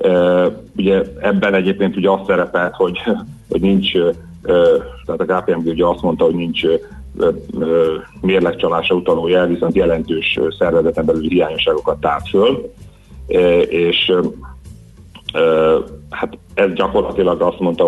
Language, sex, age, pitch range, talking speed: Hungarian, male, 40-59, 85-110 Hz, 125 wpm